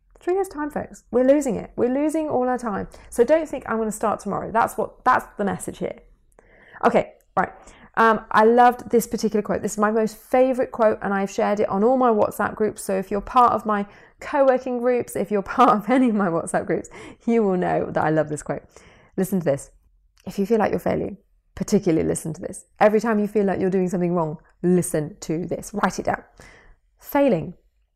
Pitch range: 180-245 Hz